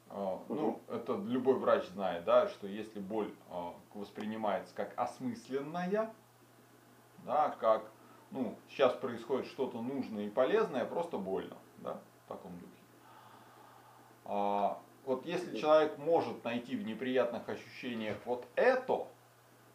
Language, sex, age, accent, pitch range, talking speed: Russian, male, 30-49, native, 110-160 Hz, 110 wpm